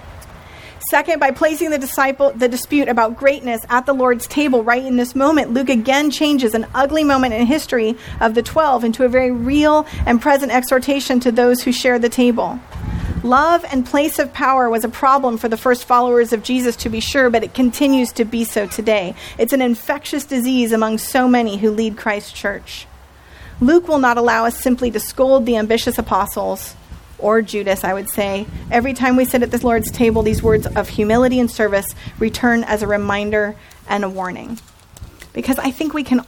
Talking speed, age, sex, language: 195 wpm, 40-59, female, English